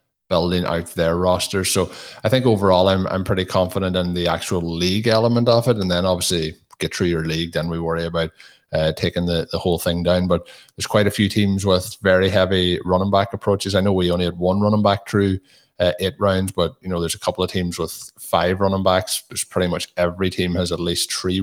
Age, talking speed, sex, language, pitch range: 20-39, 230 wpm, male, English, 85-100 Hz